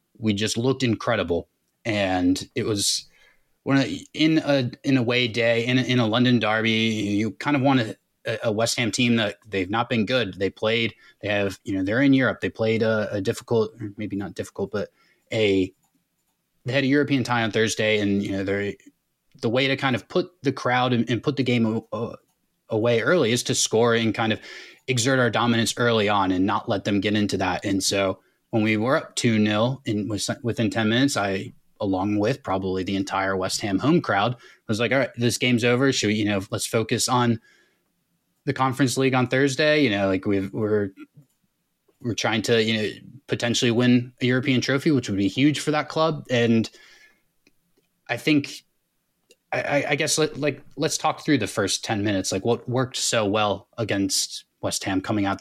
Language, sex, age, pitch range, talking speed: English, male, 20-39, 105-130 Hz, 200 wpm